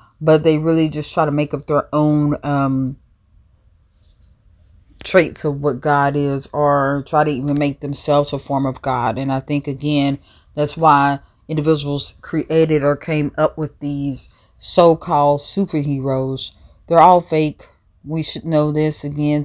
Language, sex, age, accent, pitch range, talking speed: English, female, 30-49, American, 140-155 Hz, 150 wpm